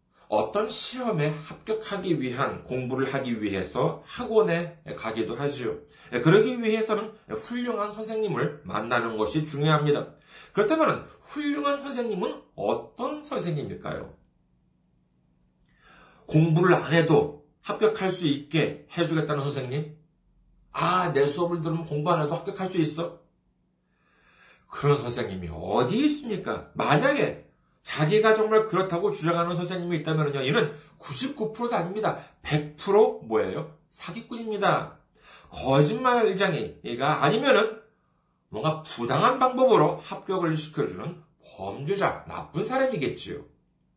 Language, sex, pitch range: Korean, male, 150-225 Hz